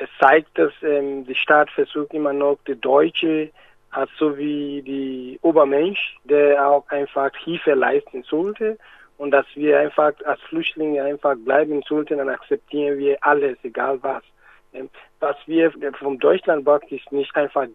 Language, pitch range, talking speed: German, 140-170 Hz, 150 wpm